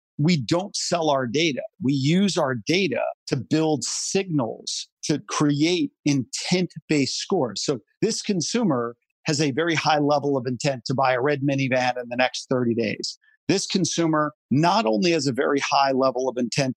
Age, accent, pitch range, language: 50-69, American, 130-170 Hz, English